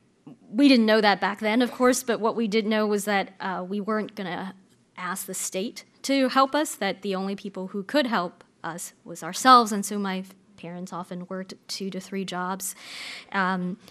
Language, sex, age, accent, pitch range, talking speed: English, female, 20-39, American, 190-230 Hz, 205 wpm